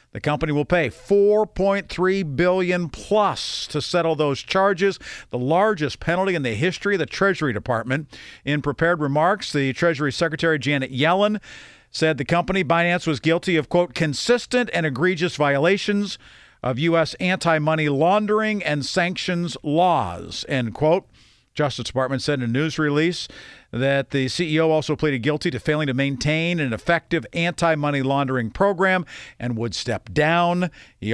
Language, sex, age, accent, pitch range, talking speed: English, male, 50-69, American, 145-185 Hz, 150 wpm